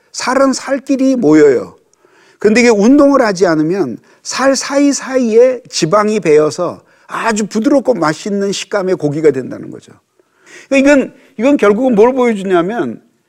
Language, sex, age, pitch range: Korean, male, 50-69, 185-280 Hz